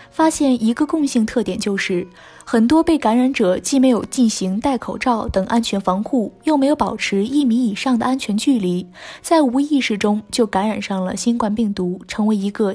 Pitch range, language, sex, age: 200-265 Hz, Chinese, female, 20-39